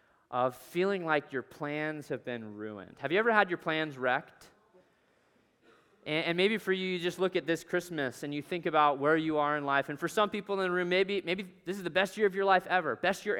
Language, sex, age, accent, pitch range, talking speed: English, male, 20-39, American, 125-185 Hz, 245 wpm